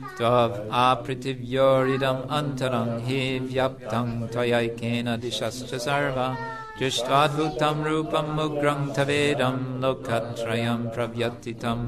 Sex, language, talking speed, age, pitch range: male, English, 70 wpm, 50-69, 120-140 Hz